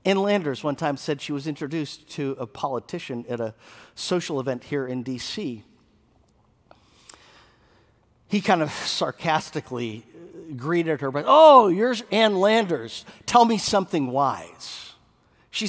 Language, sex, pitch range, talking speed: English, male, 110-175 Hz, 130 wpm